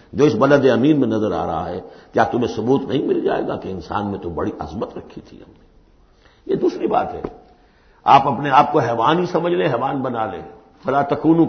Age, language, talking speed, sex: 60-79, Urdu, 220 wpm, male